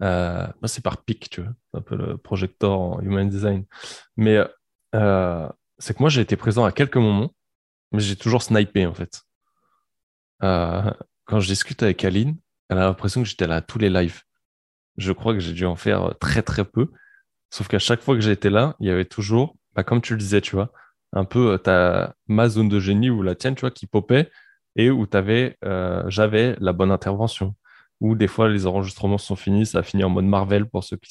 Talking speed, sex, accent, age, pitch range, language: 215 wpm, male, French, 20-39, 95-115 Hz, French